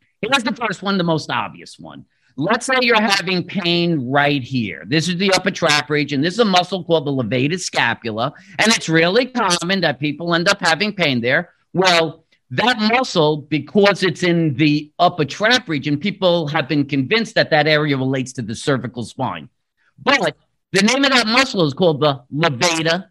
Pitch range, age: 140-200 Hz, 50-69